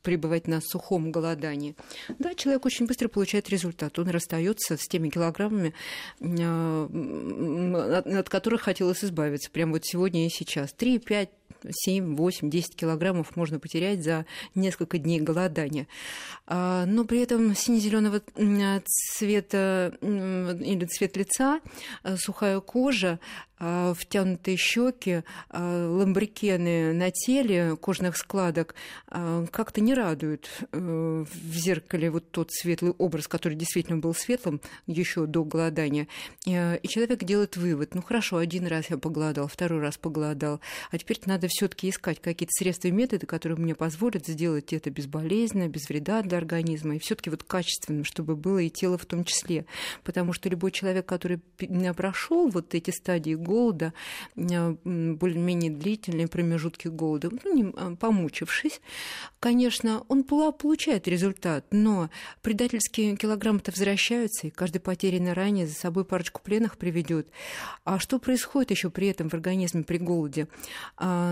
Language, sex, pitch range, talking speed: Russian, female, 165-200 Hz, 130 wpm